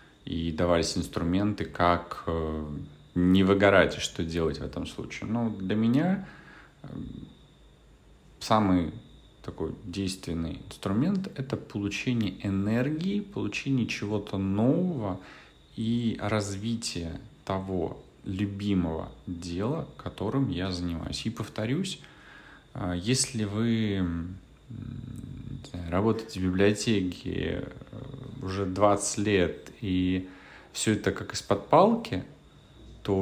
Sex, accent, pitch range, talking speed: male, native, 90-115 Hz, 90 wpm